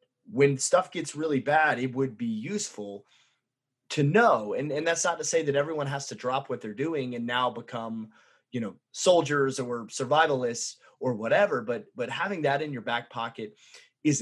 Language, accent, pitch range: English, American, 125-155 Hz